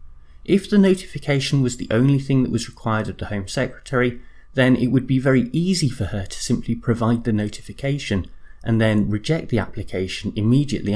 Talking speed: 180 wpm